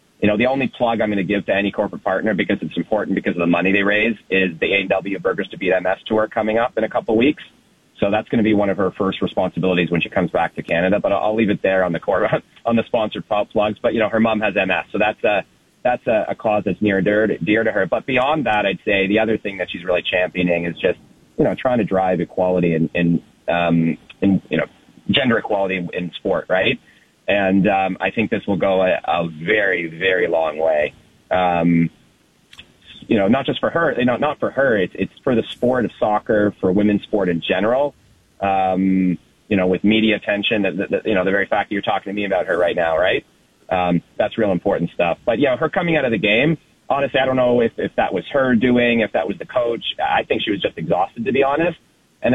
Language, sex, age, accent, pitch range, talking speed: English, male, 30-49, American, 90-105 Hz, 250 wpm